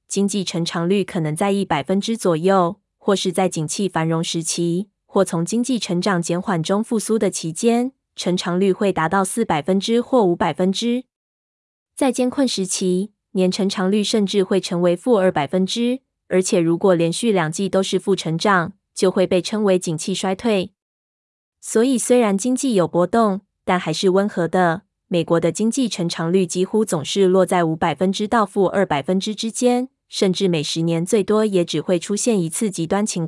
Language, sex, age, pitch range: Chinese, female, 20-39, 175-215 Hz